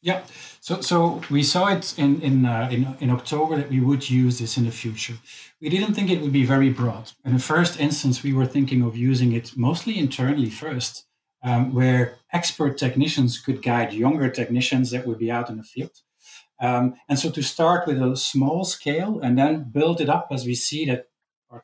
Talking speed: 210 wpm